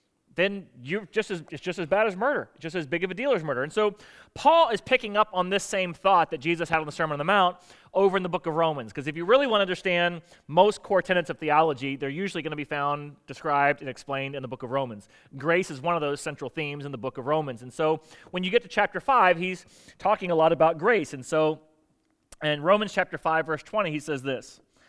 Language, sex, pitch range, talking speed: English, male, 150-190 Hz, 255 wpm